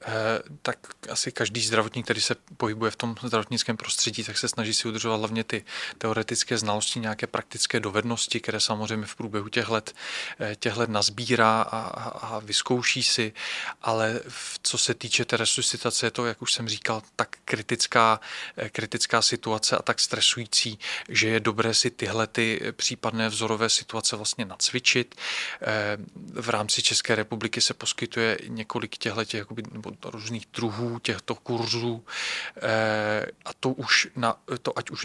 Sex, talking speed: male, 150 wpm